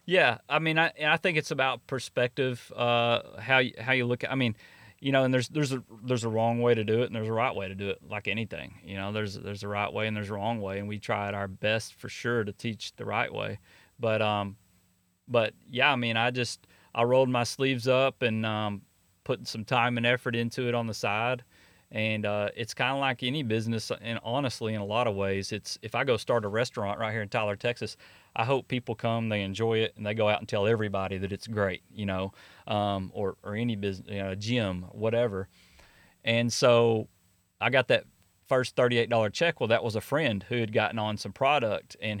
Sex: male